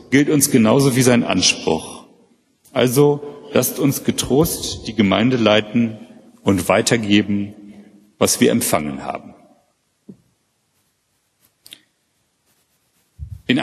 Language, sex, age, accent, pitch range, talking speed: German, male, 40-59, German, 105-145 Hz, 90 wpm